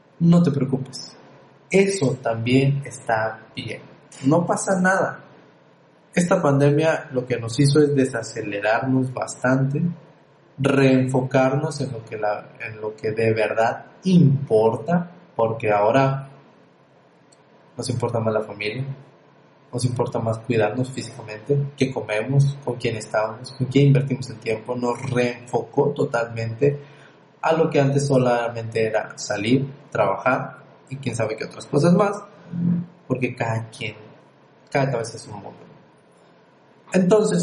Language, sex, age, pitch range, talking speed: Spanish, male, 30-49, 115-150 Hz, 125 wpm